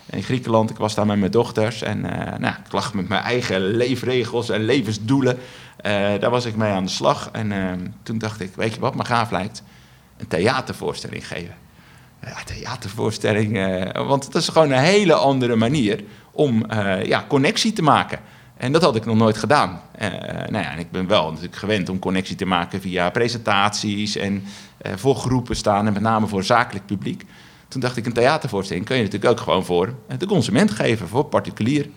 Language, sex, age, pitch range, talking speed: Dutch, male, 50-69, 100-125 Hz, 195 wpm